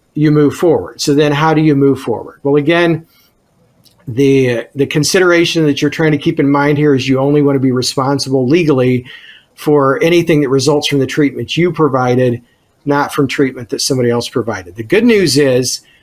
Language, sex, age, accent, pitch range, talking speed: English, male, 40-59, American, 130-155 Hz, 190 wpm